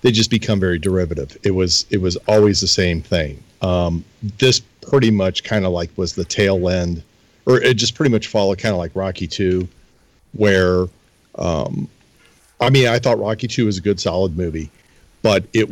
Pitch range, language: 90-110 Hz, English